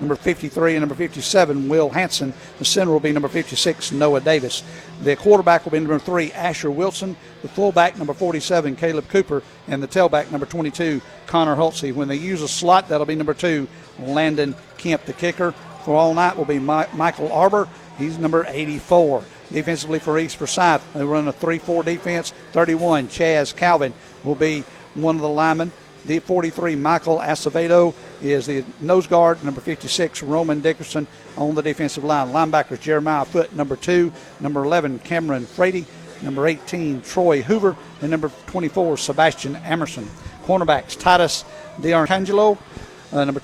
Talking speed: 160 wpm